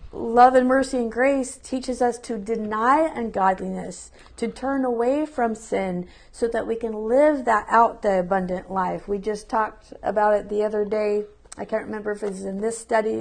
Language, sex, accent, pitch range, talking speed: English, female, American, 210-245 Hz, 190 wpm